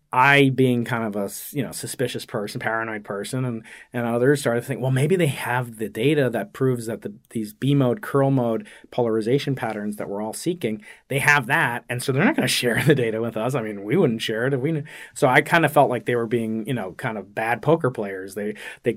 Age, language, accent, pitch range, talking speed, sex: 30-49, English, American, 115-145 Hz, 245 wpm, male